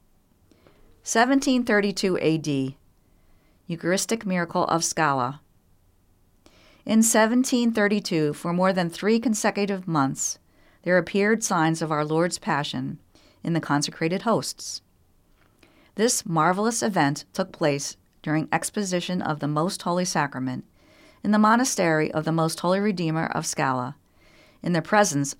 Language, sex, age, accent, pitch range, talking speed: English, female, 40-59, American, 135-195 Hz, 120 wpm